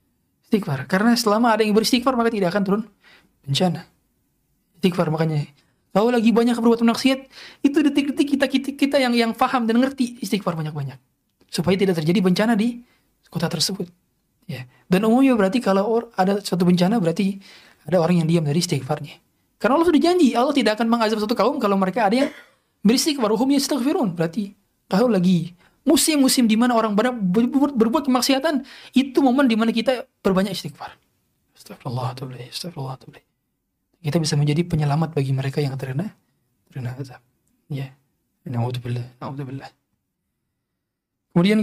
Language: Indonesian